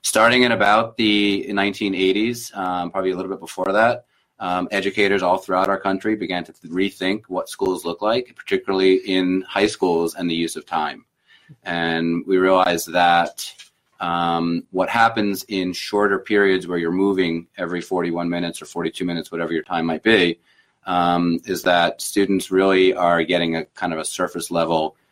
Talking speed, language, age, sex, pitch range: 175 wpm, English, 30-49, male, 85-100 Hz